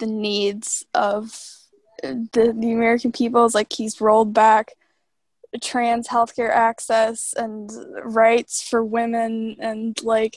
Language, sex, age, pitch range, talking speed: English, female, 10-29, 230-265 Hz, 115 wpm